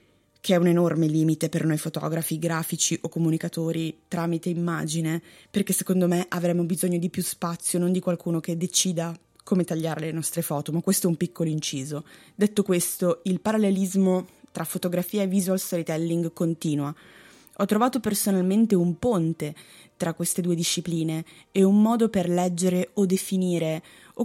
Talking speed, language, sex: 160 wpm, Italian, female